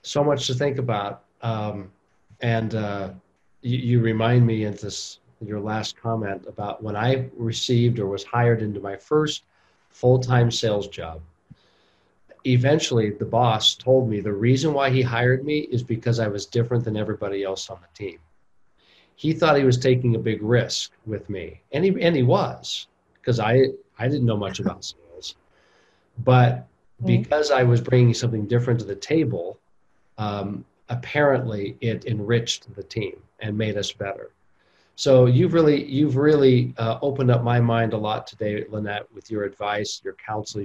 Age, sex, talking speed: 50-69, male, 165 wpm